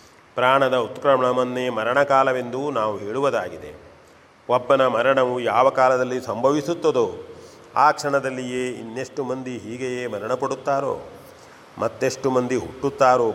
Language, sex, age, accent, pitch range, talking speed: Kannada, male, 40-59, native, 125-135 Hz, 85 wpm